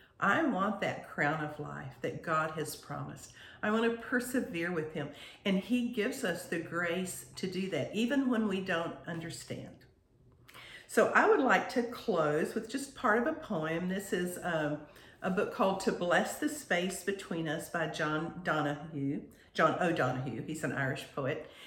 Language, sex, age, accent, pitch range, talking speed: English, female, 50-69, American, 150-205 Hz, 175 wpm